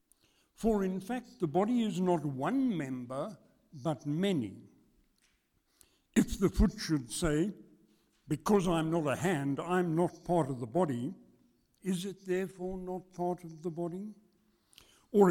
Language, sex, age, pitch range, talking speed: English, male, 60-79, 155-210 Hz, 140 wpm